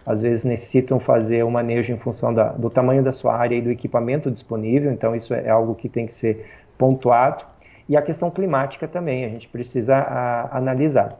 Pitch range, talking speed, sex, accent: 120-145 Hz, 190 wpm, male, Brazilian